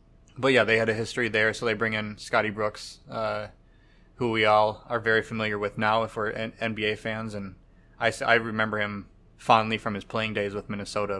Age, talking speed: 20-39, 205 wpm